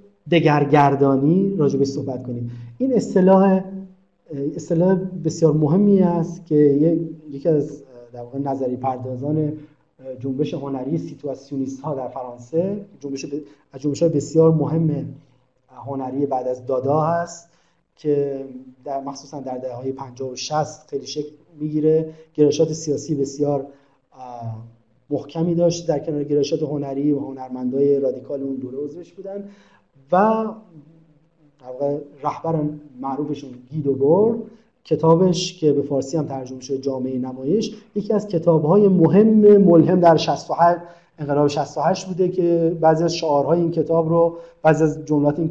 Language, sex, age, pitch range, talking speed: Persian, male, 30-49, 140-170 Hz, 115 wpm